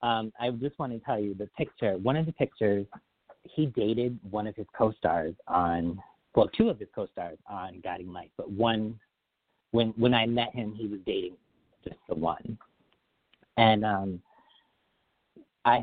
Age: 40-59